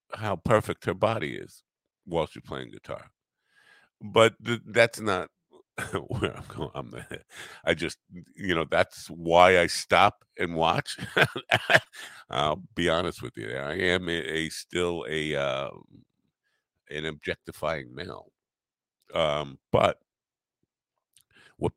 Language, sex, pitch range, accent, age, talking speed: English, male, 95-145 Hz, American, 50-69, 130 wpm